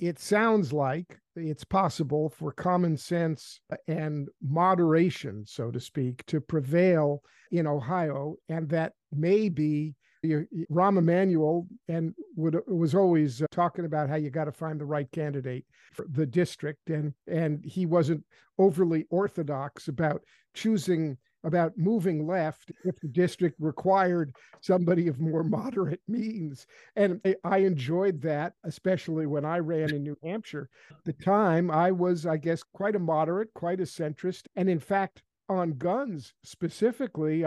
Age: 50-69